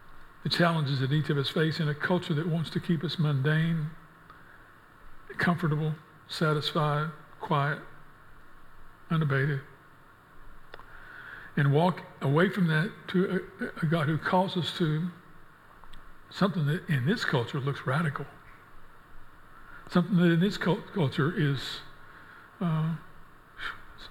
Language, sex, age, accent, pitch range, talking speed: English, male, 60-79, American, 145-170 Hz, 115 wpm